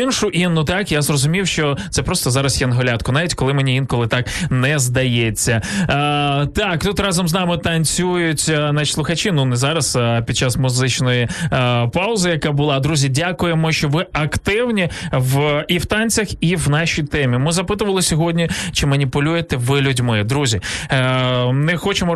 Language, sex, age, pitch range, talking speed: Ukrainian, male, 20-39, 130-155 Hz, 165 wpm